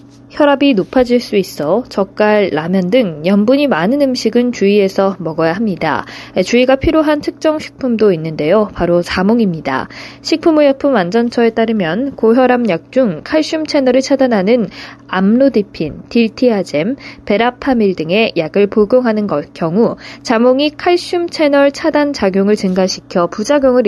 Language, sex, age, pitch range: Korean, female, 20-39, 195-270 Hz